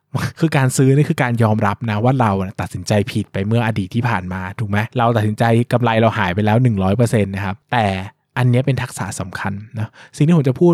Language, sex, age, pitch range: Thai, male, 20-39, 105-140 Hz